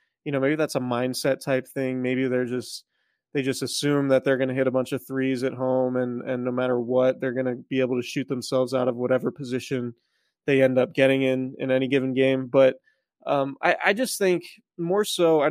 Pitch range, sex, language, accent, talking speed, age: 130-155 Hz, male, English, American, 230 wpm, 20-39